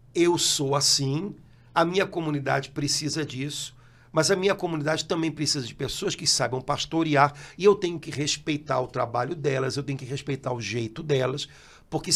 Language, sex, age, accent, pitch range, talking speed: Portuguese, male, 60-79, Brazilian, 145-180 Hz, 175 wpm